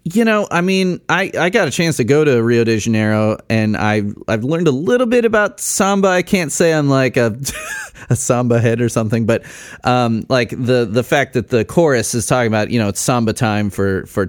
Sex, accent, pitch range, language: male, American, 110-135 Hz, English